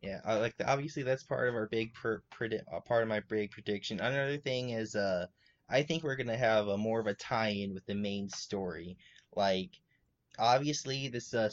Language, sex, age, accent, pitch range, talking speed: English, male, 20-39, American, 105-130 Hz, 205 wpm